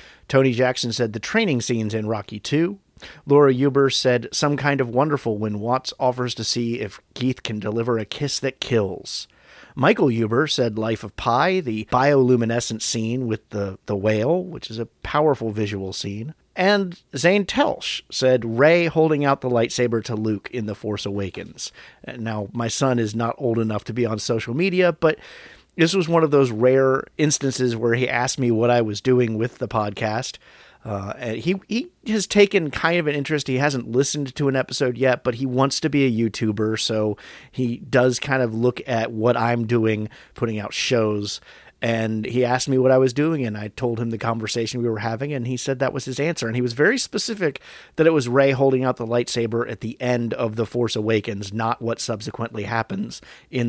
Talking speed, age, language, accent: 200 wpm, 40-59, English, American